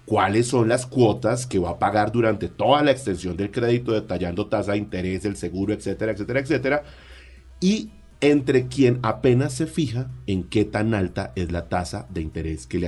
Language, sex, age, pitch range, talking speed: Spanish, male, 30-49, 90-130 Hz, 185 wpm